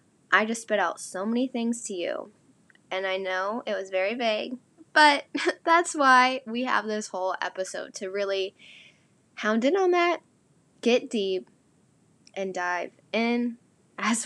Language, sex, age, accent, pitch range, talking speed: English, female, 10-29, American, 190-240 Hz, 150 wpm